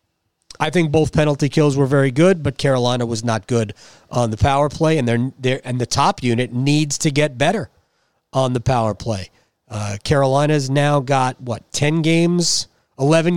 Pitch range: 130-170 Hz